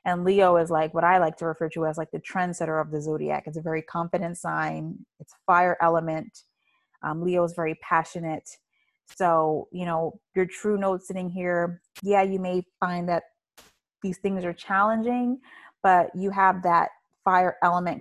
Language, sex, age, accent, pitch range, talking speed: English, female, 30-49, American, 165-195 Hz, 175 wpm